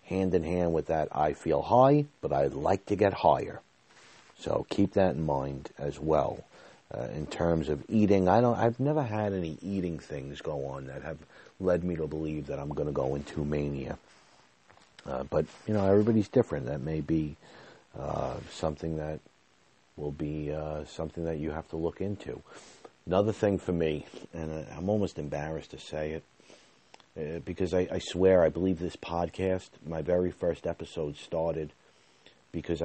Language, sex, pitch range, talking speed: English, male, 75-95 Hz, 175 wpm